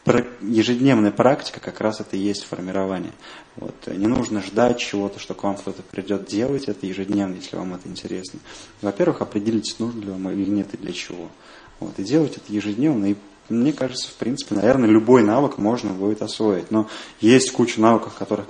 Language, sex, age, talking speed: Russian, male, 20-39, 185 wpm